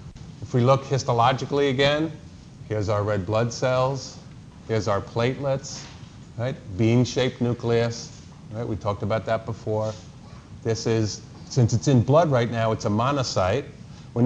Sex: male